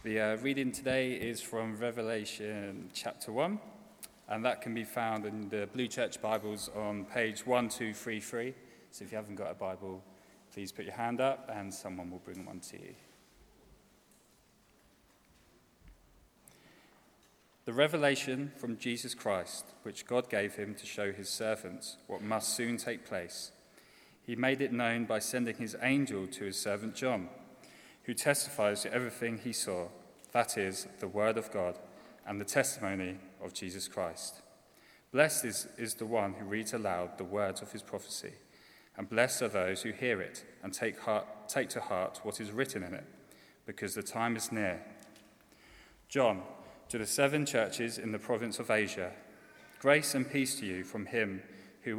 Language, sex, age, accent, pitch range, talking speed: English, male, 20-39, British, 100-125 Hz, 165 wpm